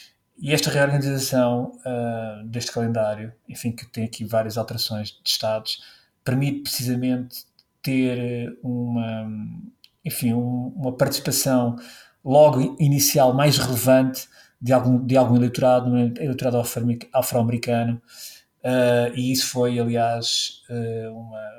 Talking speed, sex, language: 95 wpm, male, Portuguese